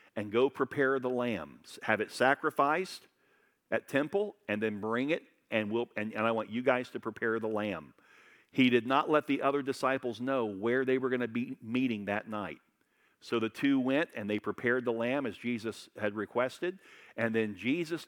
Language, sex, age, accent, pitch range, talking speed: English, male, 50-69, American, 105-135 Hz, 195 wpm